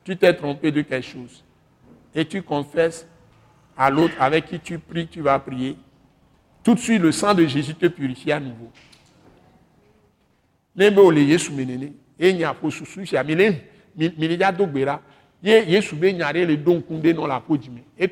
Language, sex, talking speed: French, male, 115 wpm